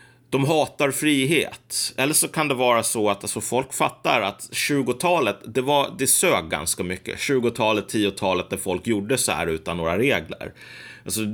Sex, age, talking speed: male, 30-49, 160 wpm